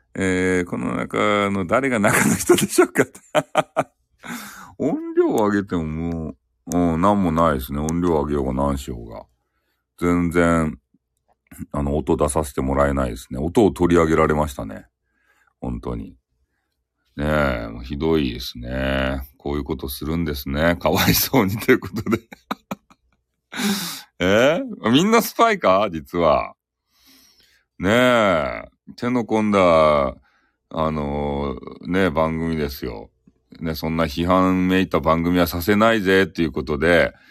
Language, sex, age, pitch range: Japanese, male, 40-59, 75-100 Hz